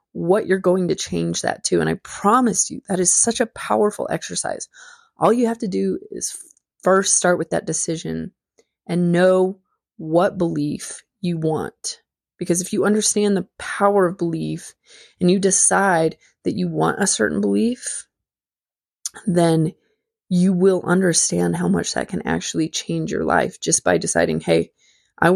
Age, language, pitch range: 20-39, English, 160-200 Hz